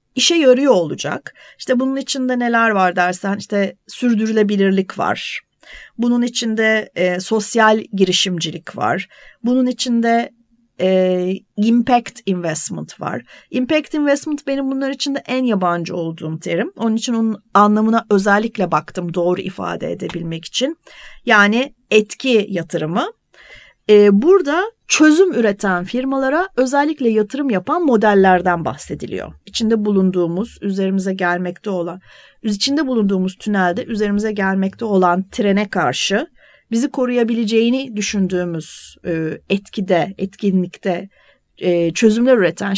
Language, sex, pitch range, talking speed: Turkish, female, 185-250 Hz, 105 wpm